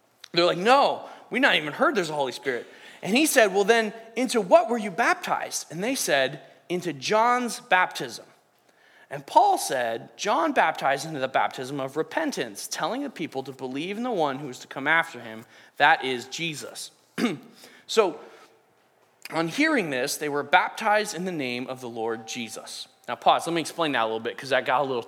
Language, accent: English, American